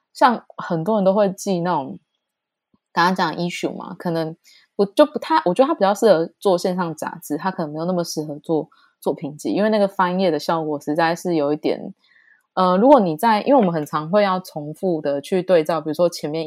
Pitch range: 155-200 Hz